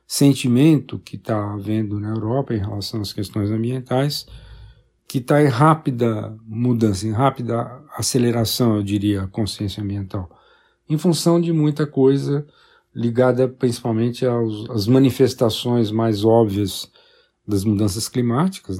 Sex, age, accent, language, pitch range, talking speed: male, 50-69, Brazilian, Portuguese, 105-130 Hz, 120 wpm